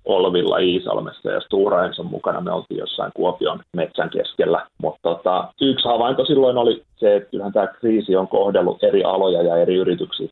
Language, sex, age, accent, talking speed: Finnish, male, 30-49, native, 175 wpm